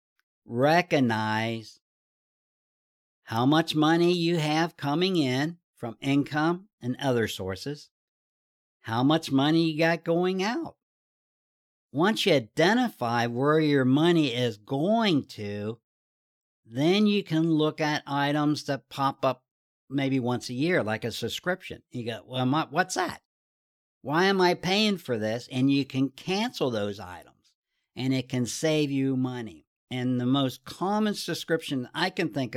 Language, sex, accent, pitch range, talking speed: English, male, American, 120-155 Hz, 140 wpm